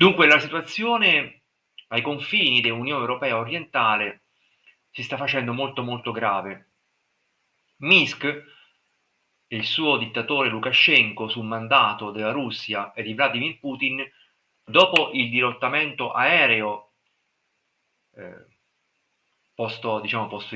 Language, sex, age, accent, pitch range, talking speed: Italian, male, 40-59, native, 110-135 Hz, 100 wpm